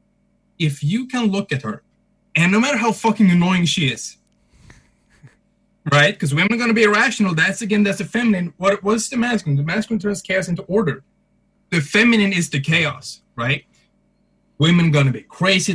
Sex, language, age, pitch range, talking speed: male, English, 20-39, 145-205 Hz, 185 wpm